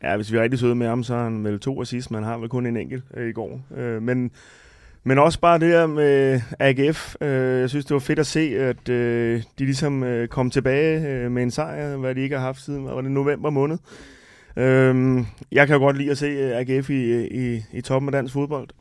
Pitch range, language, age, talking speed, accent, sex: 120-140 Hz, Danish, 20-39, 225 wpm, native, male